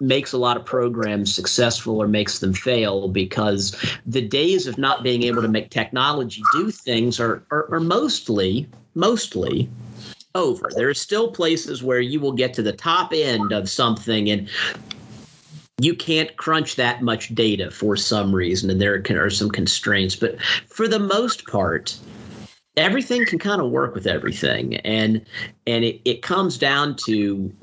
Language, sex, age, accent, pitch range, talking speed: English, male, 40-59, American, 105-125 Hz, 165 wpm